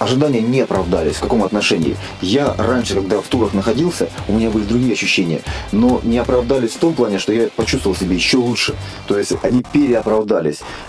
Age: 30-49